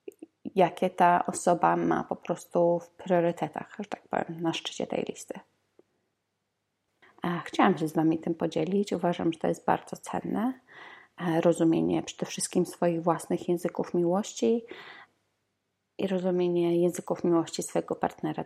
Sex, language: female, Polish